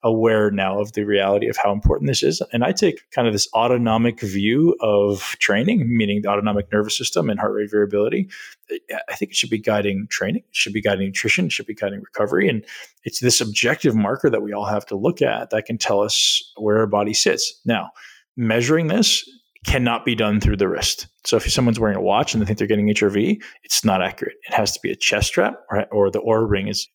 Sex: male